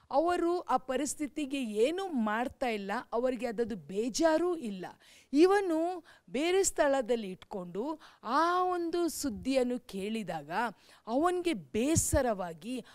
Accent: native